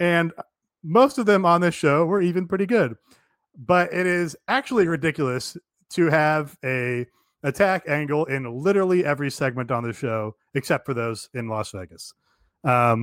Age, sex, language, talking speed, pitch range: 30-49, male, English, 160 wpm, 120-155 Hz